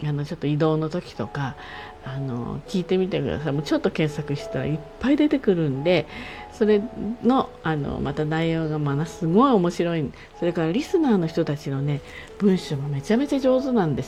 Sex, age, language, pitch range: female, 50-69, Japanese, 140-190 Hz